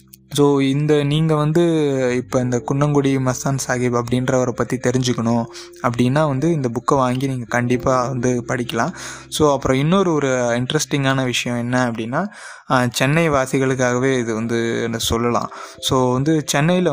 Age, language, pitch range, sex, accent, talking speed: 20-39, Tamil, 120-145 Hz, male, native, 135 wpm